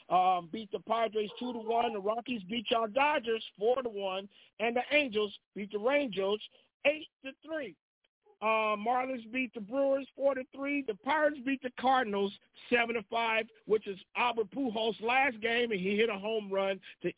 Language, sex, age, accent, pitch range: Japanese, male, 50-69, American, 205-265 Hz